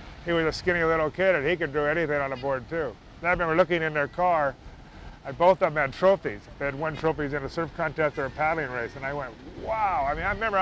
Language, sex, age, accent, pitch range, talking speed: English, male, 30-49, American, 140-165 Hz, 270 wpm